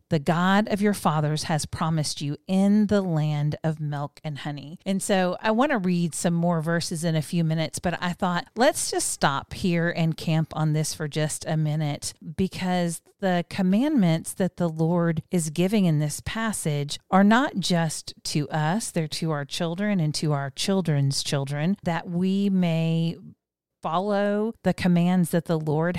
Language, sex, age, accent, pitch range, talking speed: English, female, 40-59, American, 155-195 Hz, 180 wpm